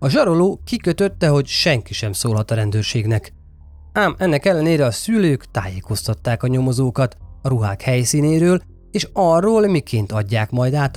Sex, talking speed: male, 140 wpm